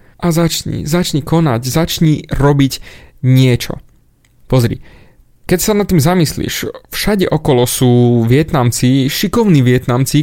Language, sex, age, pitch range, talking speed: Slovak, male, 30-49, 125-160 Hz, 110 wpm